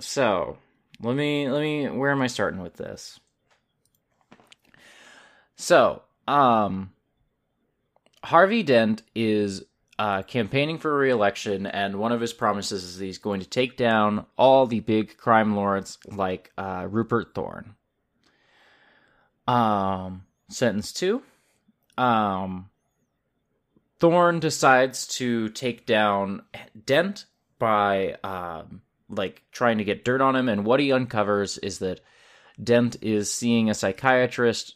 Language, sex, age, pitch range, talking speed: English, male, 20-39, 100-130 Hz, 125 wpm